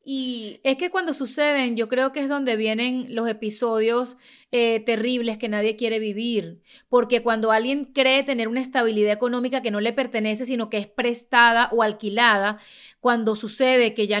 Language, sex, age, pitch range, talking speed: Spanish, female, 30-49, 225-275 Hz, 175 wpm